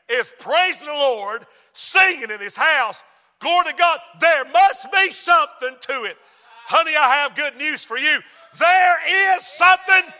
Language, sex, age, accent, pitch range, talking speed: English, male, 50-69, American, 230-325 Hz, 160 wpm